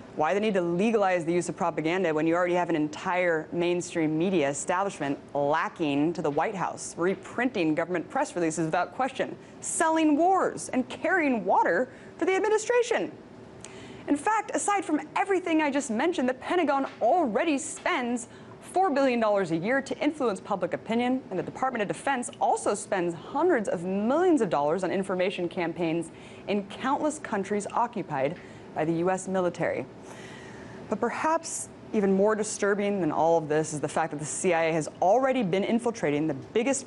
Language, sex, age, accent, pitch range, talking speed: English, female, 20-39, American, 165-255 Hz, 165 wpm